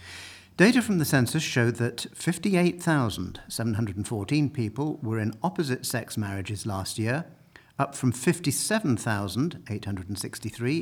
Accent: British